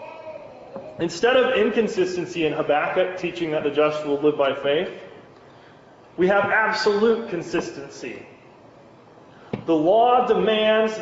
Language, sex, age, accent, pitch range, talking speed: English, male, 30-49, American, 155-220 Hz, 110 wpm